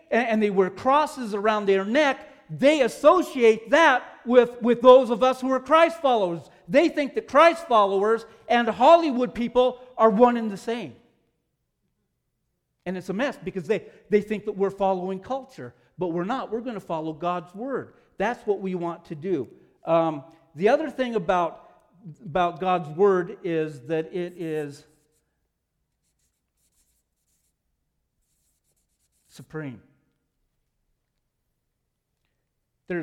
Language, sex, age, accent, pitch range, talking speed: English, male, 50-69, American, 155-225 Hz, 135 wpm